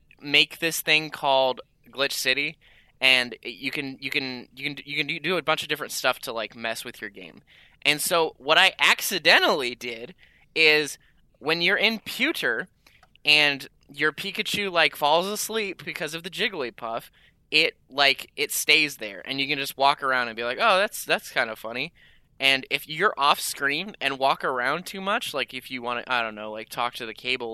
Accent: American